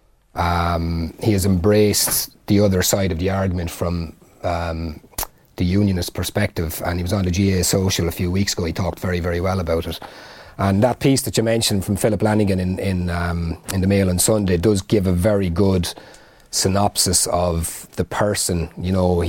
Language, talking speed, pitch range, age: English, 190 wpm, 90-105 Hz, 30-49